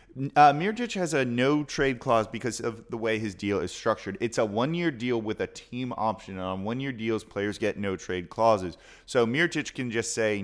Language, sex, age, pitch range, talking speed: English, male, 30-49, 110-140 Hz, 200 wpm